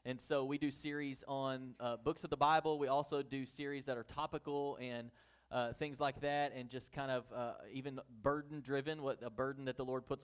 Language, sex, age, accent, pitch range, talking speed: English, male, 30-49, American, 135-165 Hz, 215 wpm